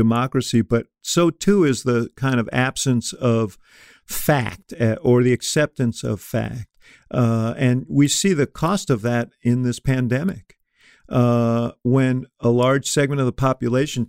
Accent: American